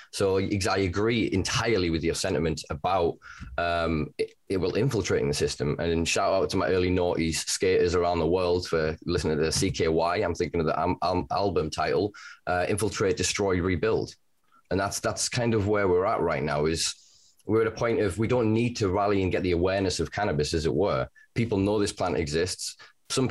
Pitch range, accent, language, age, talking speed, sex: 90-110 Hz, British, English, 20-39, 200 wpm, male